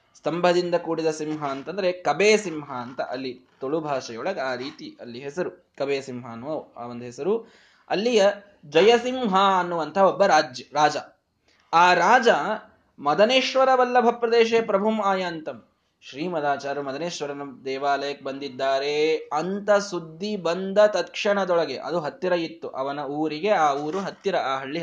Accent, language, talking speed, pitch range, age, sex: native, Kannada, 115 wpm, 150-210 Hz, 20-39, male